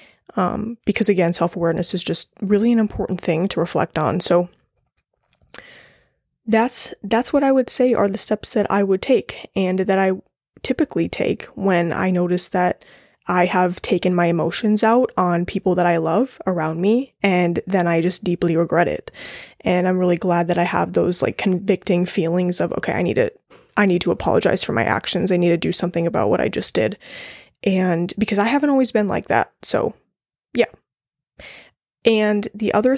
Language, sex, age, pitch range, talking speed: English, female, 20-39, 180-220 Hz, 185 wpm